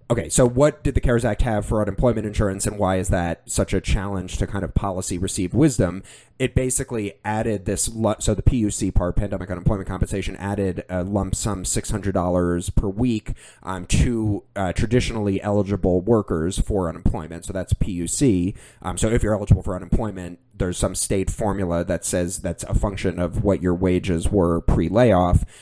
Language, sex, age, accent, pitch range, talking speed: English, male, 30-49, American, 90-105 Hz, 180 wpm